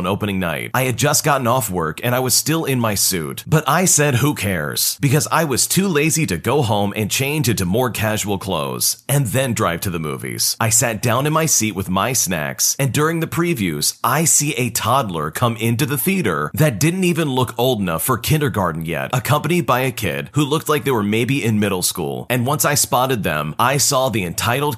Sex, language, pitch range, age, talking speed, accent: male, English, 105-145 Hz, 30-49, 225 wpm, American